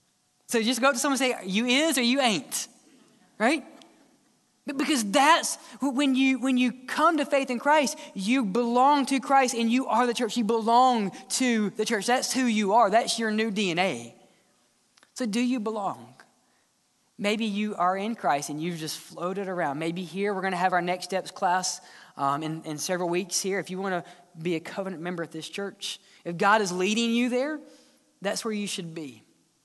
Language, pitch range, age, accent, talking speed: English, 185-250 Hz, 20-39, American, 195 wpm